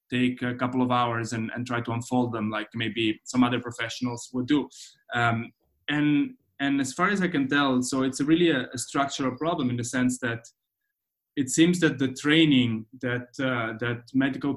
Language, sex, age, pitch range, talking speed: English, male, 20-39, 120-135 Hz, 200 wpm